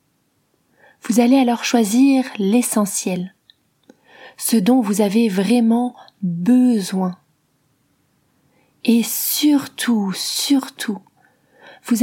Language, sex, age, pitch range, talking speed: French, female, 30-49, 190-240 Hz, 75 wpm